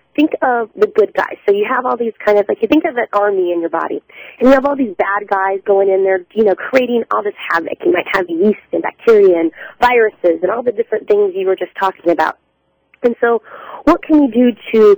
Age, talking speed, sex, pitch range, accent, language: 30-49, 250 wpm, female, 195-255 Hz, American, English